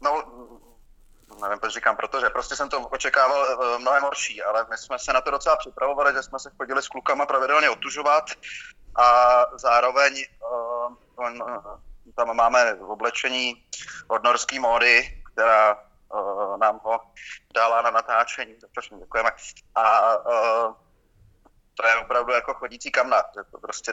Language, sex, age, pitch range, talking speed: Czech, male, 30-49, 120-140 Hz, 140 wpm